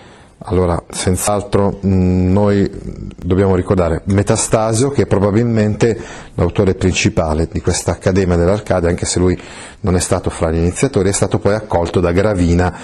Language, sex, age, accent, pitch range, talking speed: Italian, male, 40-59, native, 90-110 Hz, 140 wpm